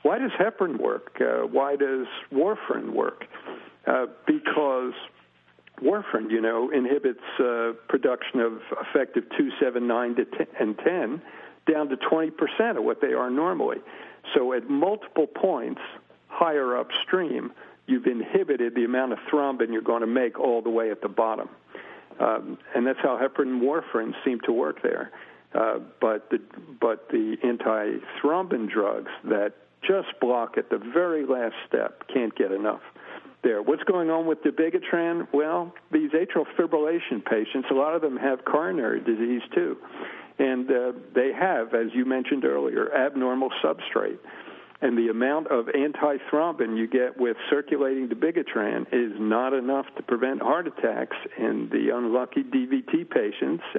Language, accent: English, American